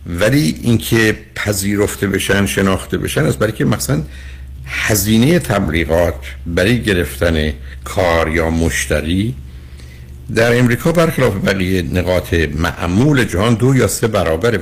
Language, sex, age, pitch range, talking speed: Persian, male, 60-79, 85-115 Hz, 115 wpm